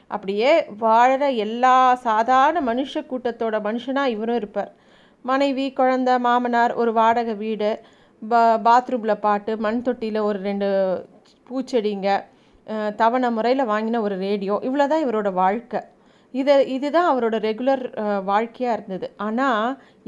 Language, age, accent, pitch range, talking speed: Tamil, 30-49, native, 225-285 Hz, 110 wpm